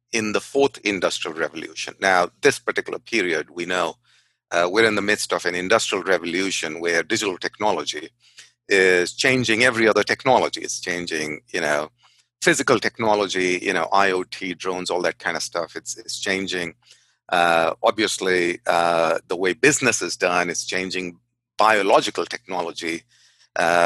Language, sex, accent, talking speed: English, male, Indian, 150 wpm